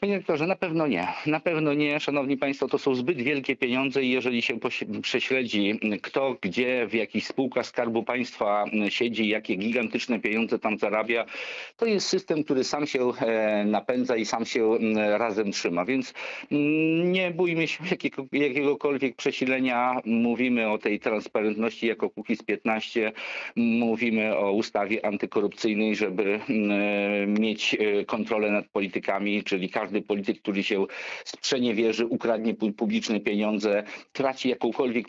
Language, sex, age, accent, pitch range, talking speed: Polish, male, 50-69, native, 105-135 Hz, 130 wpm